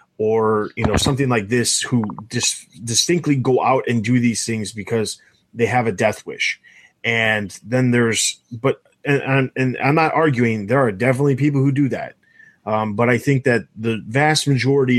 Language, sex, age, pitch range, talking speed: English, male, 30-49, 110-130 Hz, 190 wpm